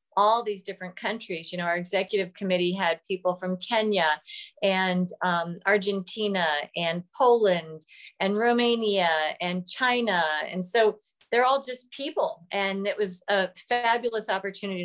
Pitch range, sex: 180-215 Hz, female